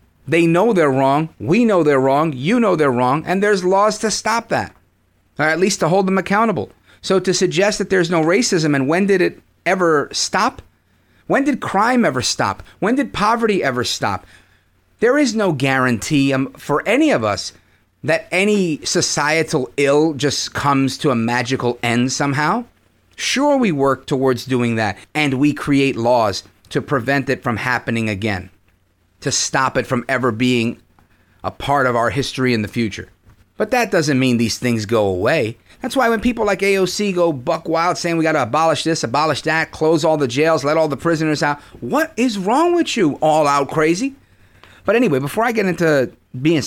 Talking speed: 190 wpm